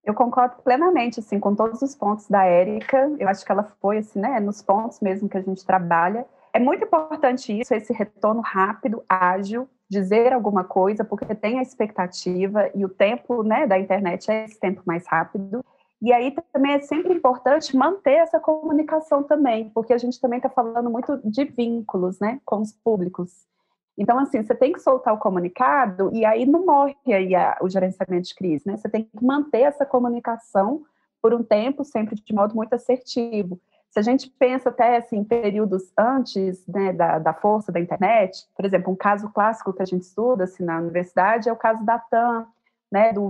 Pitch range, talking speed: 190-250 Hz, 190 wpm